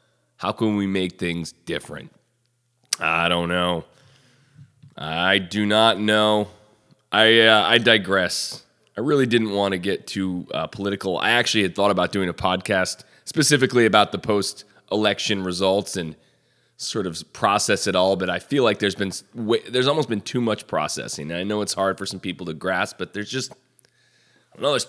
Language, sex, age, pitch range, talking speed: English, male, 20-39, 95-120 Hz, 180 wpm